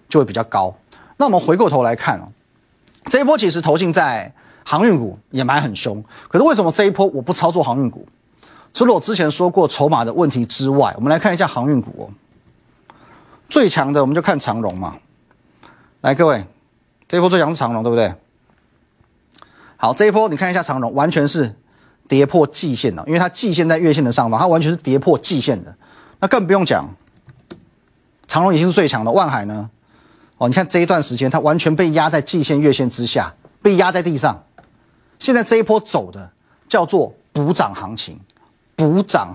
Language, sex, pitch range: Chinese, male, 115-175 Hz